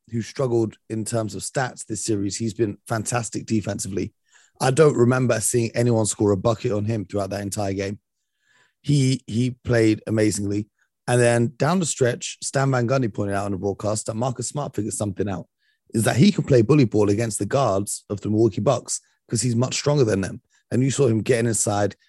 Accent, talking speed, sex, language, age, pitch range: British, 205 wpm, male, English, 30-49, 105-125 Hz